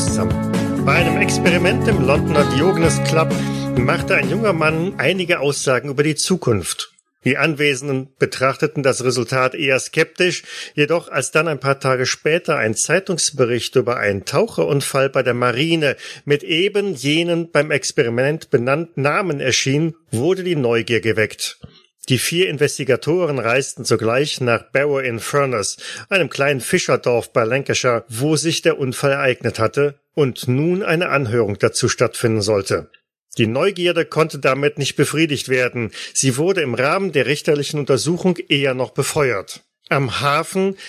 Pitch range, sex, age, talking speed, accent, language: 130-165 Hz, male, 40-59, 140 wpm, German, German